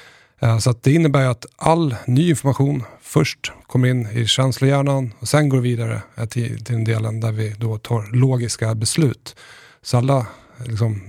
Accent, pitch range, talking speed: native, 110-130 Hz, 155 wpm